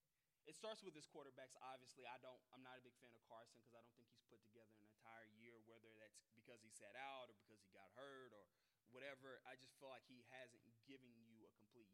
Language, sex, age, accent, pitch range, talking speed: English, male, 30-49, American, 115-135 Hz, 250 wpm